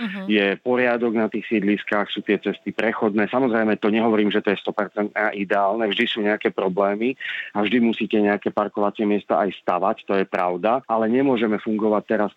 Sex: male